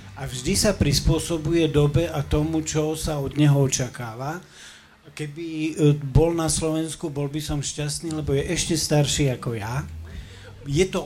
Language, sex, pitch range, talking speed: Slovak, male, 135-155 Hz, 150 wpm